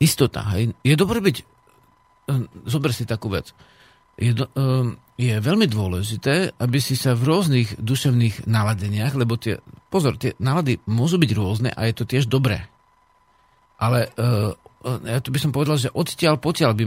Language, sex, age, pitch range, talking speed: Slovak, male, 50-69, 115-150 Hz, 155 wpm